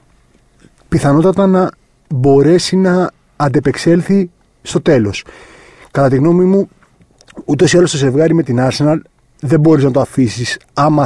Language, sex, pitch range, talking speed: Greek, male, 135-165 Hz, 135 wpm